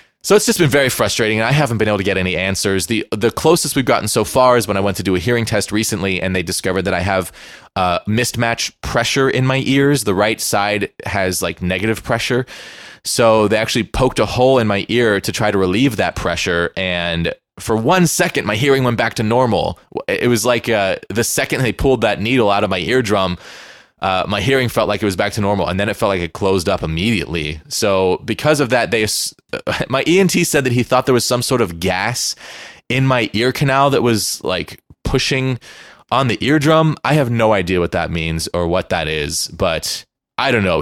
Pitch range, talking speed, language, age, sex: 95-130 Hz, 225 wpm, English, 20-39, male